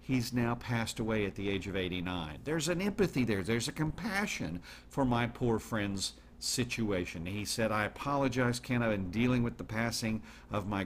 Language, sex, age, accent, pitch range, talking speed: English, male, 50-69, American, 105-130 Hz, 190 wpm